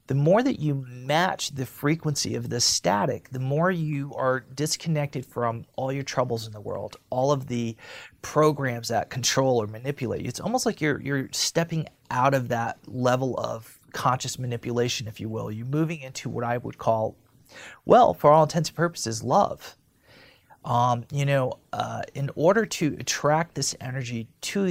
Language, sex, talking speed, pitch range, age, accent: English, male, 175 wpm, 120-145 Hz, 30-49, American